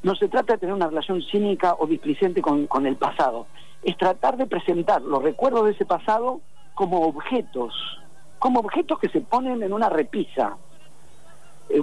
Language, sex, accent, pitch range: Spanish, male, Argentinian, 170-245 Hz